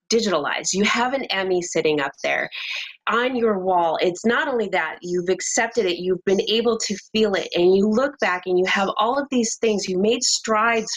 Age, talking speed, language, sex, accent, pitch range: 30-49, 210 wpm, English, female, American, 190-260 Hz